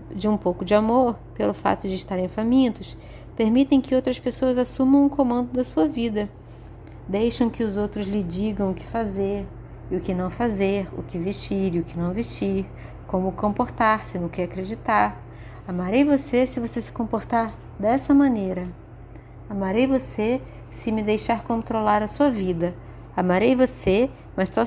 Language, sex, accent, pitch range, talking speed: Portuguese, female, Brazilian, 170-245 Hz, 170 wpm